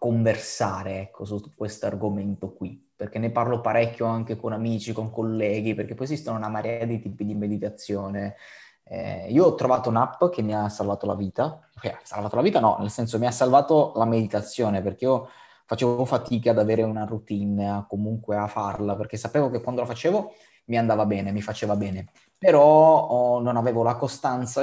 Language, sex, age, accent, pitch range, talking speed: Italian, male, 20-39, native, 105-125 Hz, 190 wpm